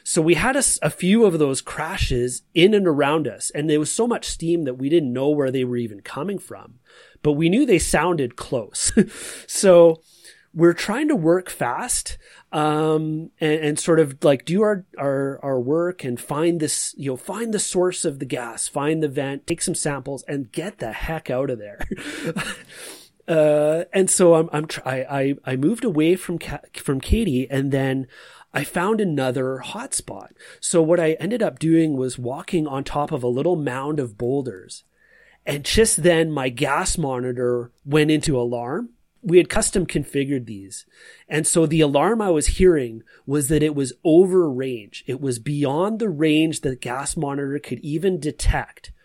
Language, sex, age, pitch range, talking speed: English, male, 30-49, 135-170 Hz, 180 wpm